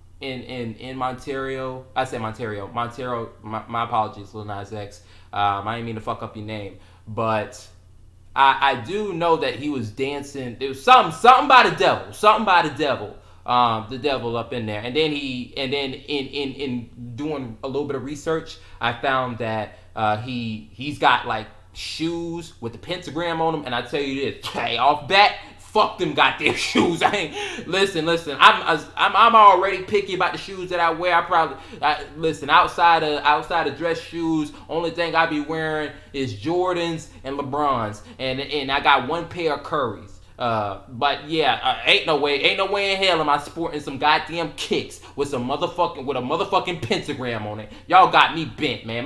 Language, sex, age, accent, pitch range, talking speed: English, male, 20-39, American, 115-165 Hz, 200 wpm